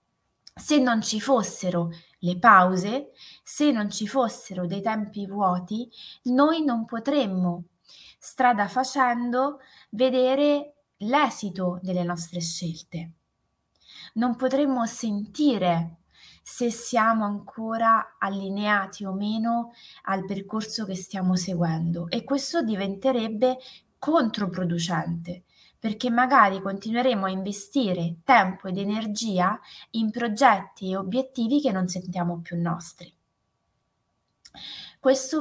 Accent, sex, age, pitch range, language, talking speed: native, female, 20-39, 185-245 Hz, Italian, 100 wpm